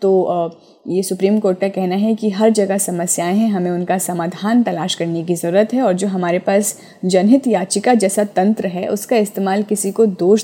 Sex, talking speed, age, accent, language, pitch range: female, 195 wpm, 20-39, native, Hindi, 175-210 Hz